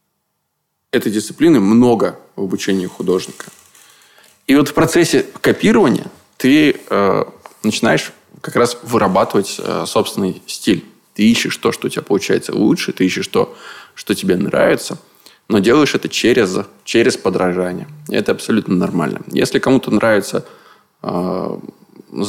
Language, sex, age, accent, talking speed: Russian, male, 20-39, native, 130 wpm